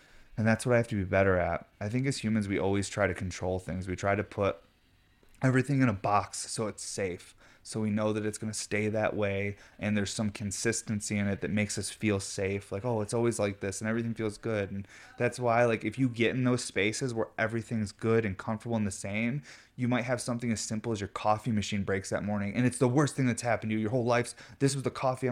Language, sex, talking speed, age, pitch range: English, male, 255 wpm, 20-39, 105-125 Hz